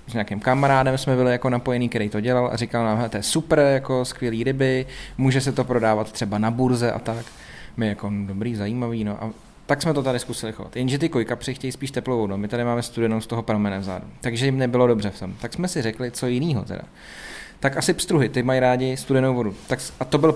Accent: native